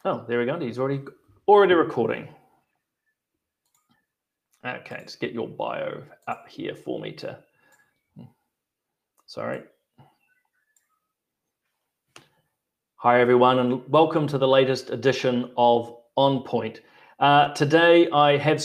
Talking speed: 110 wpm